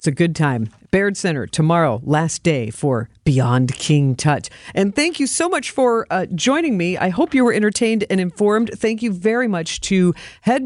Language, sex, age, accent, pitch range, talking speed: English, female, 50-69, American, 155-220 Hz, 190 wpm